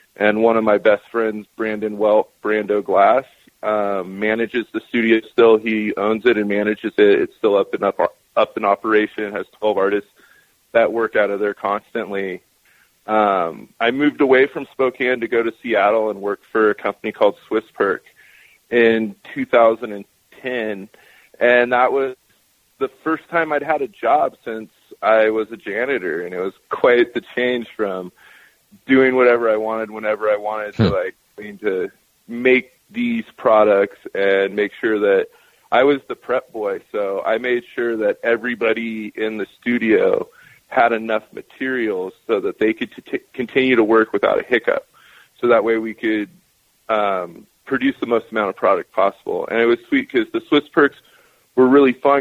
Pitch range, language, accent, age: 110-150 Hz, English, American, 30-49